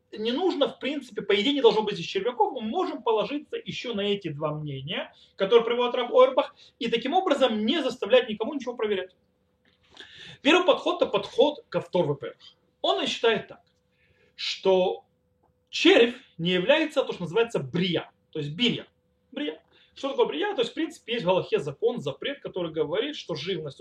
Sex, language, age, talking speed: male, Russian, 30-49, 175 wpm